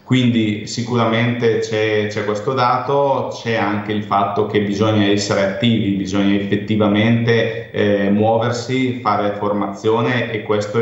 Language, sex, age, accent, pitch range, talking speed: Italian, male, 30-49, native, 105-115 Hz, 115 wpm